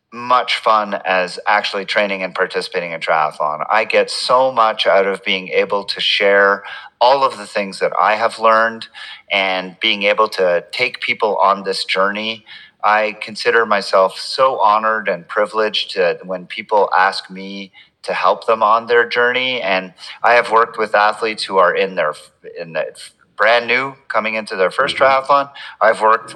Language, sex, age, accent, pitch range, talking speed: English, male, 40-59, American, 100-125 Hz, 170 wpm